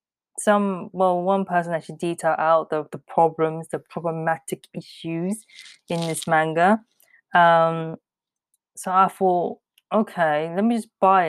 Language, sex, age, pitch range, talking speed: English, female, 20-39, 165-215 Hz, 140 wpm